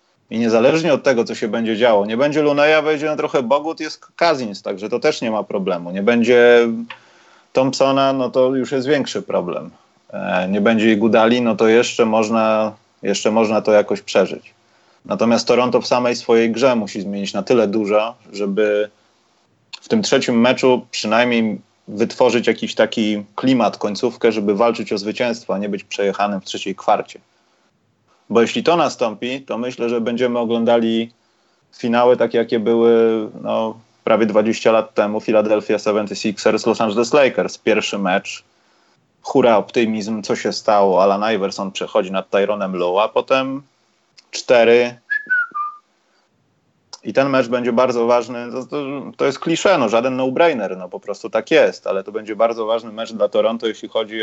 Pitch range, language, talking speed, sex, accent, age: 110-125 Hz, Polish, 160 wpm, male, native, 30-49